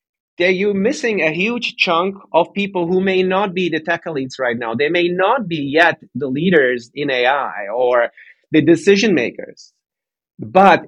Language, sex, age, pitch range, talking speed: English, male, 30-49, 145-180 Hz, 165 wpm